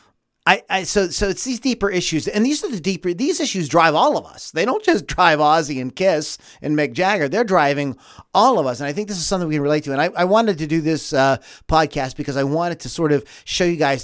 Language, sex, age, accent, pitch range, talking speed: English, male, 40-59, American, 135-165 Hz, 265 wpm